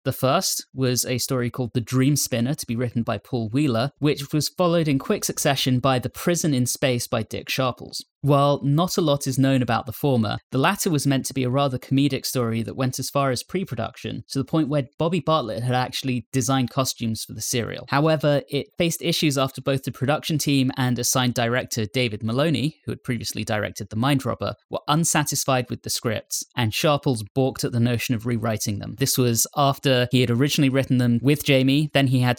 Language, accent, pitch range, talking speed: English, British, 120-140 Hz, 215 wpm